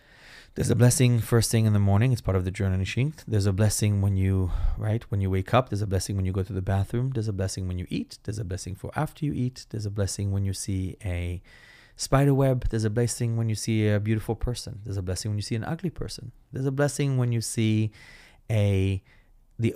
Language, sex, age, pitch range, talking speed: English, male, 30-49, 100-125 Hz, 245 wpm